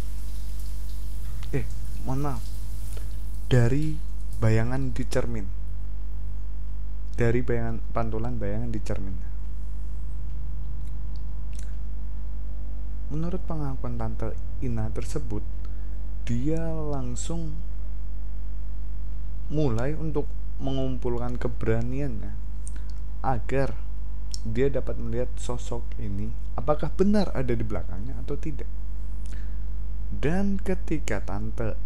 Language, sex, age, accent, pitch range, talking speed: Indonesian, male, 20-39, native, 100-130 Hz, 75 wpm